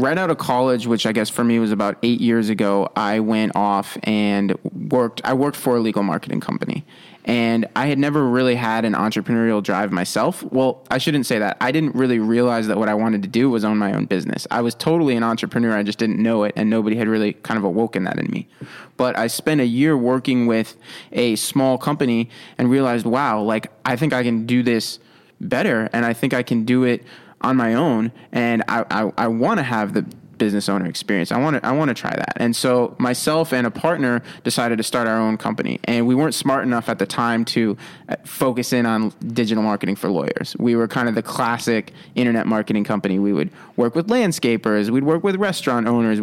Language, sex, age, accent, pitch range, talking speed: English, male, 20-39, American, 110-125 Hz, 225 wpm